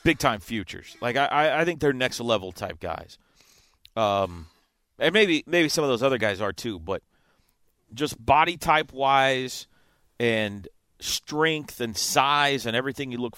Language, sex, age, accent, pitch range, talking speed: English, male, 30-49, American, 100-140 Hz, 150 wpm